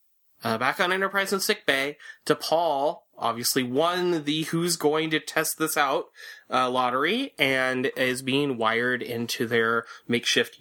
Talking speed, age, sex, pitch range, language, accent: 145 wpm, 20-39, male, 125-165 Hz, English, American